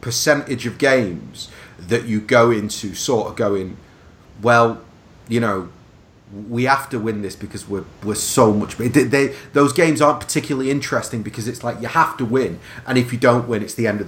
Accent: British